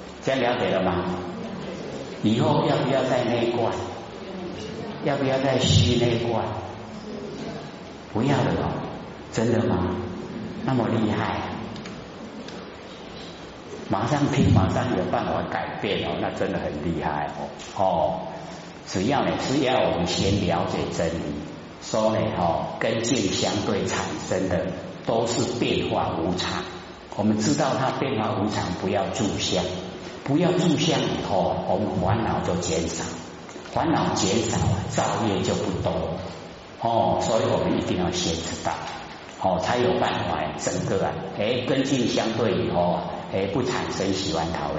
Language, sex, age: Chinese, male, 50-69